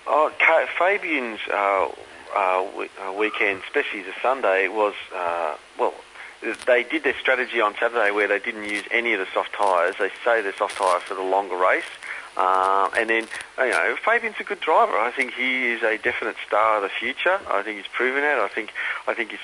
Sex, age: male, 40-59